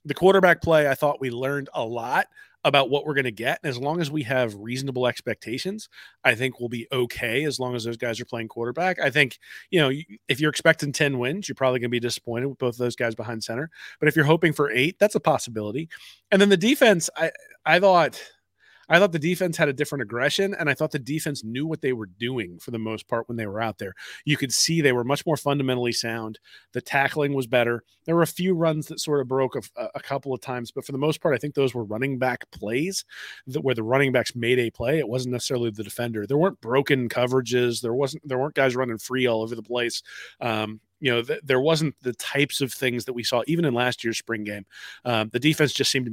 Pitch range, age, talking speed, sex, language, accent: 115-150 Hz, 30-49, 250 wpm, male, English, American